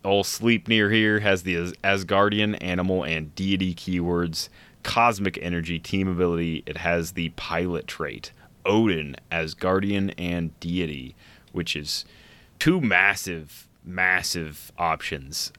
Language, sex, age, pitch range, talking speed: English, male, 20-39, 85-100 Hz, 115 wpm